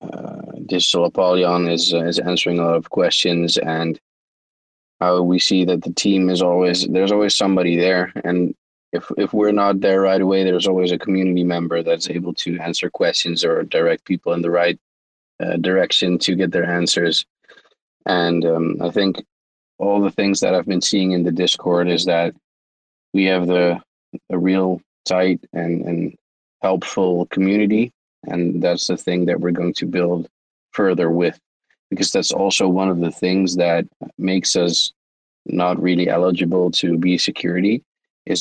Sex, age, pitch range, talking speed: male, 20-39, 85-95 Hz, 170 wpm